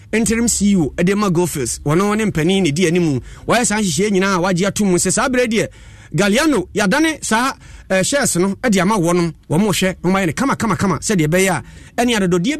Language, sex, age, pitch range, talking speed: English, male, 30-49, 135-195 Hz, 180 wpm